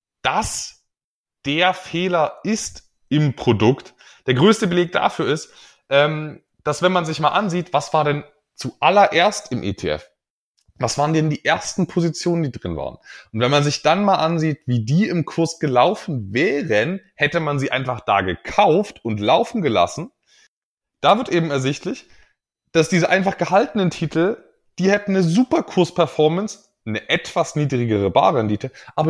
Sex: male